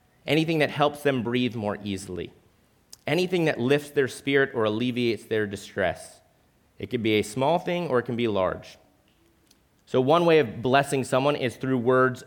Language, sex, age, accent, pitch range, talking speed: English, male, 30-49, American, 110-150 Hz, 175 wpm